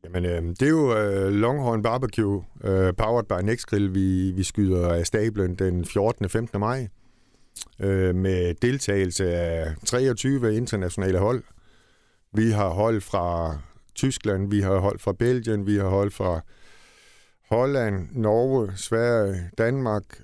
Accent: native